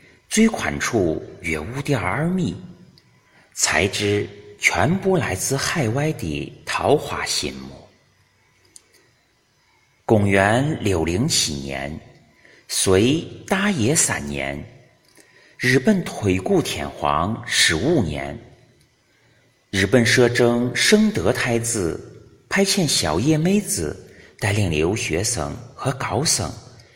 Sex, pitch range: male, 90-140 Hz